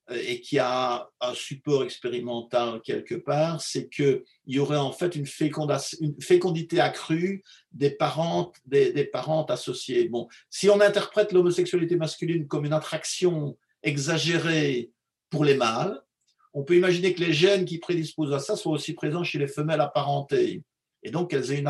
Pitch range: 140-180 Hz